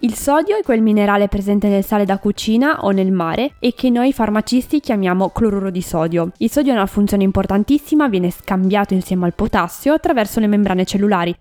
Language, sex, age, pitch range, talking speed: Italian, female, 20-39, 190-255 Hz, 190 wpm